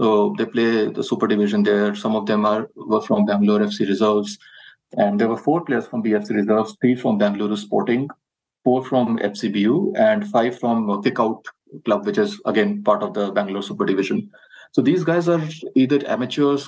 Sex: male